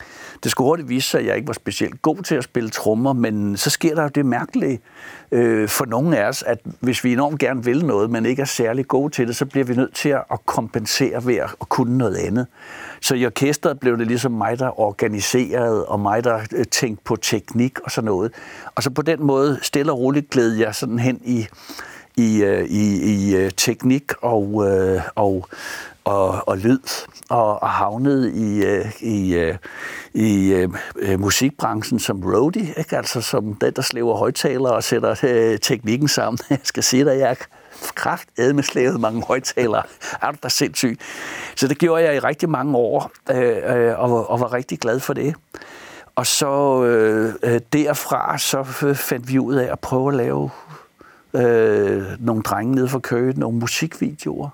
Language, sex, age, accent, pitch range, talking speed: Danish, male, 60-79, native, 110-135 Hz, 185 wpm